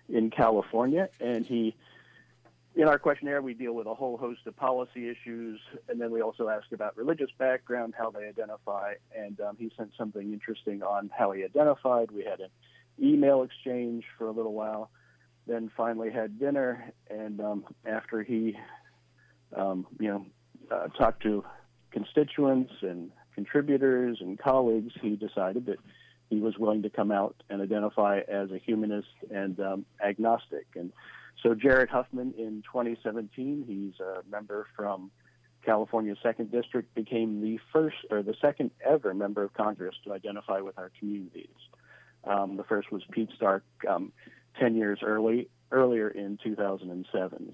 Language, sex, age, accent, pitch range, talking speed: English, male, 40-59, American, 105-120 Hz, 155 wpm